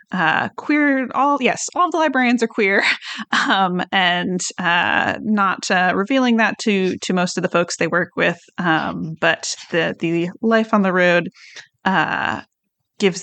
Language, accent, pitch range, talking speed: English, American, 185-220 Hz, 160 wpm